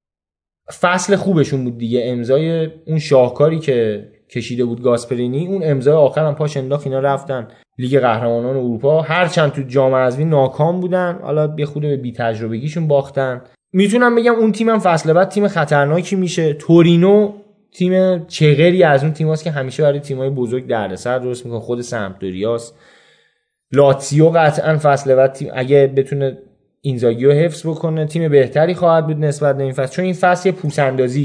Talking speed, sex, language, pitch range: 165 wpm, male, Persian, 135-190 Hz